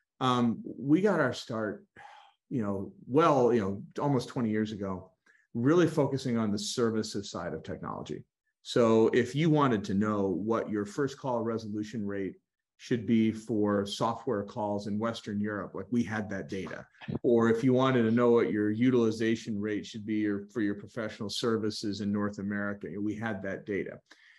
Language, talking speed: English, 170 wpm